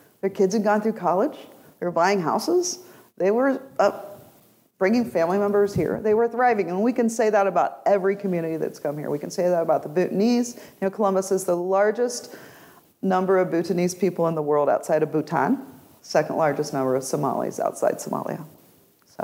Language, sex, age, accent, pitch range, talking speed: English, female, 40-59, American, 165-225 Hz, 190 wpm